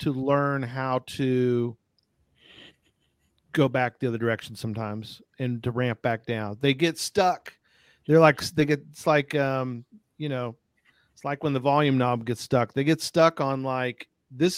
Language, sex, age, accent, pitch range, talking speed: English, male, 40-59, American, 125-165 Hz, 170 wpm